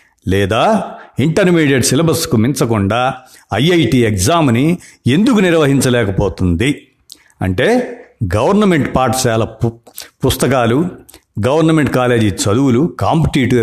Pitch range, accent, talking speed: 115-155 Hz, native, 70 wpm